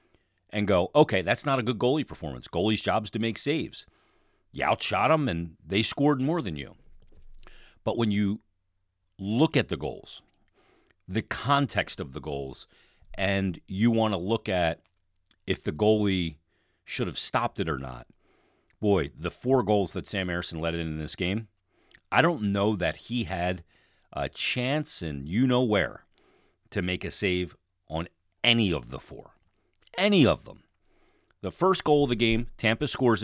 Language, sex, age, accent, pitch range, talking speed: English, male, 40-59, American, 90-115 Hz, 170 wpm